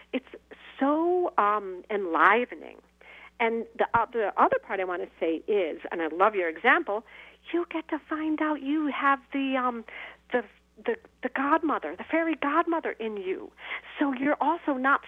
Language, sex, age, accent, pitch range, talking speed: English, female, 50-69, American, 205-310 Hz, 165 wpm